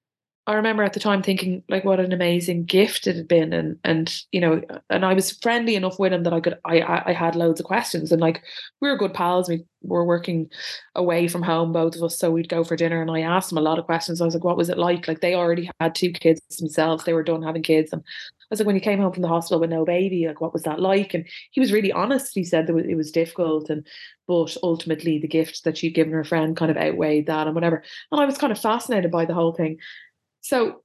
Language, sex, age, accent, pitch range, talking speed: English, female, 20-39, Irish, 165-195 Hz, 270 wpm